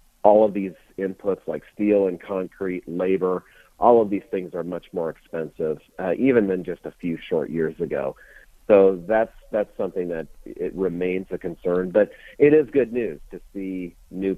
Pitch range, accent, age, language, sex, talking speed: 85-105 Hz, American, 40-59, English, male, 180 wpm